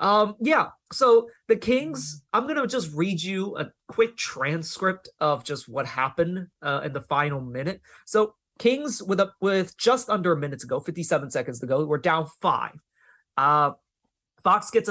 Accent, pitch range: American, 150-215 Hz